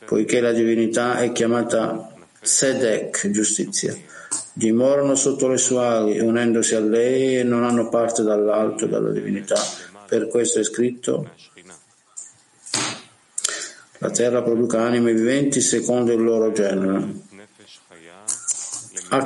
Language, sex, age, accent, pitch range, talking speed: Italian, male, 50-69, native, 110-130 Hz, 110 wpm